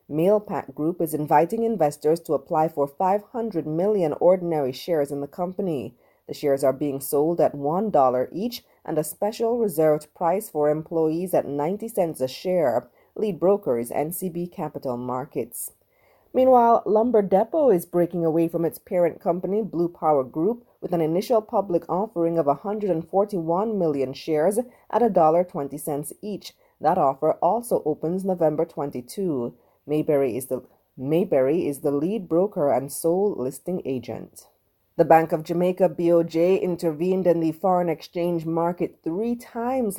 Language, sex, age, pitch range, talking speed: English, female, 30-49, 150-200 Hz, 145 wpm